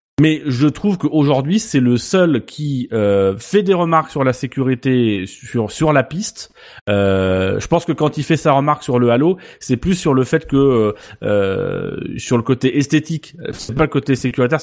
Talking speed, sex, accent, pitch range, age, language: 195 wpm, male, French, 120-150 Hz, 30-49, French